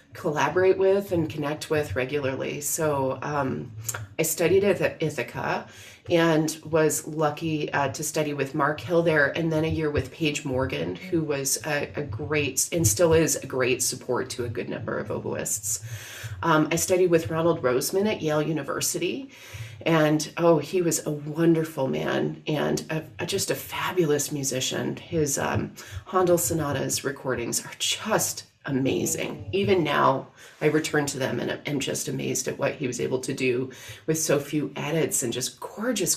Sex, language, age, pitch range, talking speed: female, English, 30-49, 140-185 Hz, 165 wpm